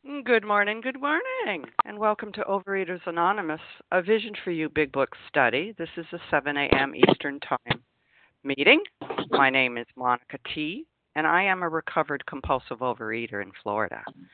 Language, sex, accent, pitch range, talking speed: English, female, American, 135-190 Hz, 160 wpm